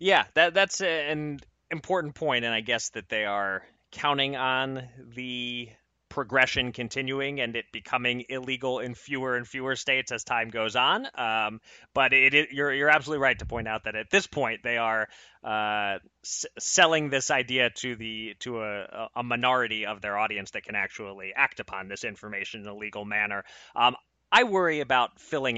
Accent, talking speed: American, 180 wpm